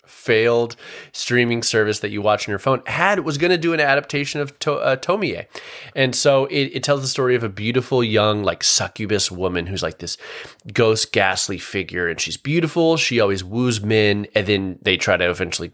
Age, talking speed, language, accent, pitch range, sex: 20-39, 200 wpm, English, American, 95-130 Hz, male